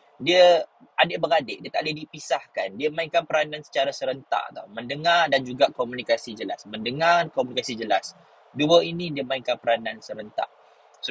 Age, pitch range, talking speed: 20-39, 125-170 Hz, 145 wpm